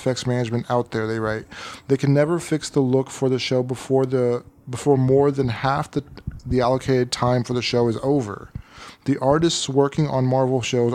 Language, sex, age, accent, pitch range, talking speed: English, male, 20-39, American, 125-145 Hz, 190 wpm